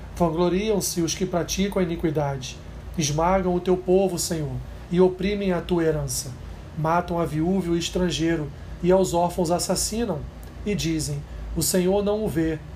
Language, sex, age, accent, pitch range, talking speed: Portuguese, male, 40-59, Brazilian, 165-200 Hz, 155 wpm